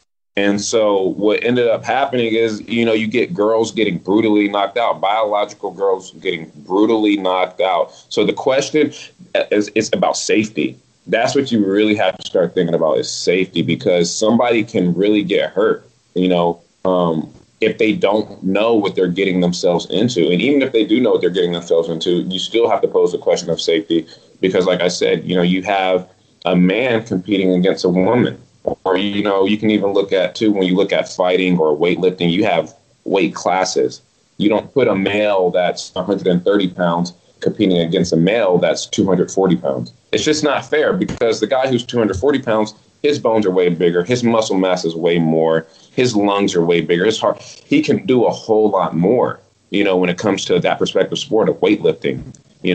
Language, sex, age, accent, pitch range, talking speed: English, male, 20-39, American, 90-115 Hz, 200 wpm